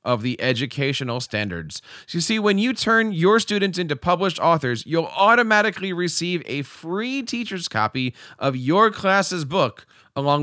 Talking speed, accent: 155 wpm, American